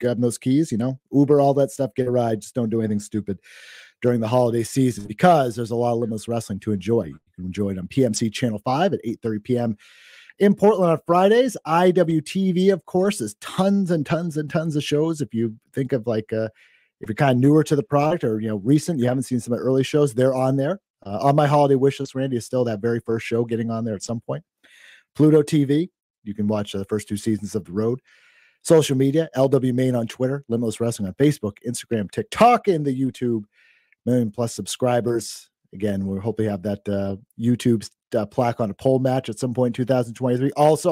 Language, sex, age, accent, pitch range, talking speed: English, male, 40-59, American, 115-140 Hz, 225 wpm